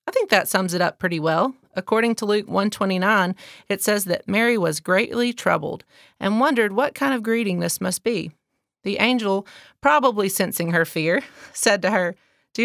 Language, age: English, 30-49